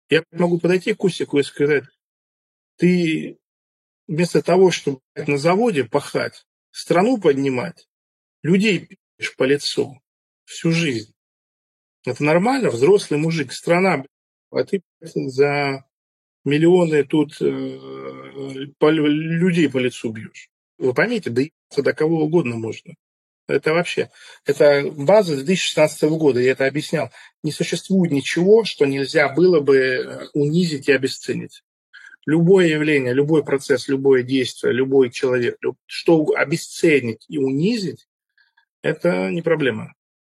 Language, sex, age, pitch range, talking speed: Russian, male, 40-59, 135-175 Hz, 120 wpm